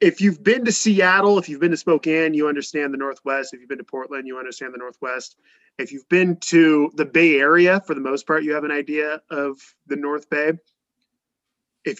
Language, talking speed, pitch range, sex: English, 215 wpm, 130-190 Hz, male